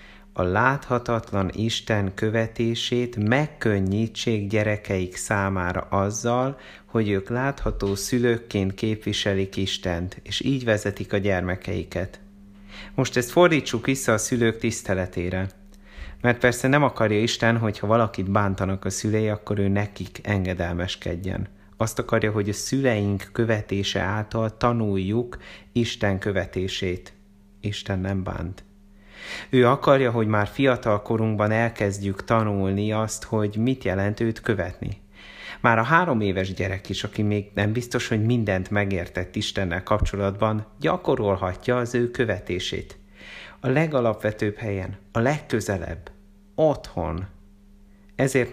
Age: 30-49